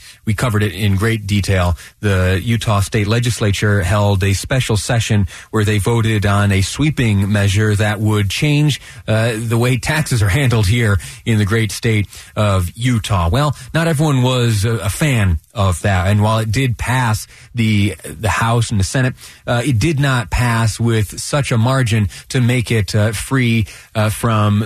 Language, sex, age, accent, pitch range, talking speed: English, male, 30-49, American, 100-120 Hz, 180 wpm